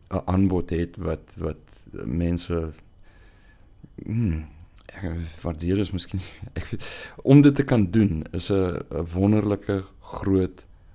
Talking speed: 110 wpm